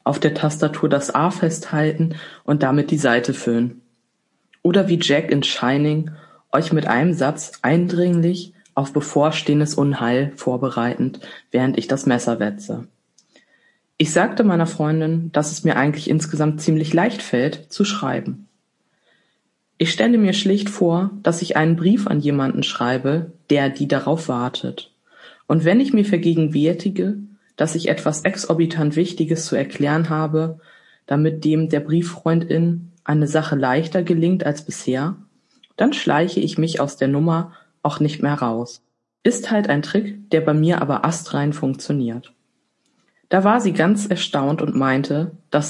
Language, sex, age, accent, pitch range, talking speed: German, female, 20-39, German, 145-175 Hz, 145 wpm